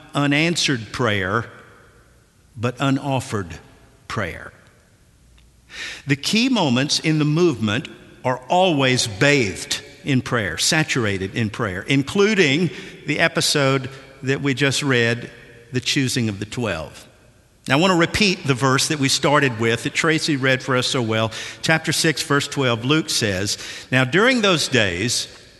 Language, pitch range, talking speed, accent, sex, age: English, 120-160 Hz, 140 wpm, American, male, 50-69